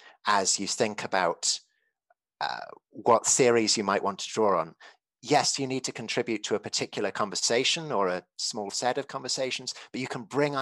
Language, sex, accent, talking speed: English, male, British, 180 wpm